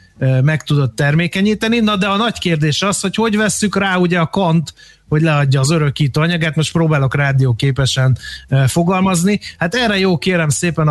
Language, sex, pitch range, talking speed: Hungarian, male, 140-170 Hz, 165 wpm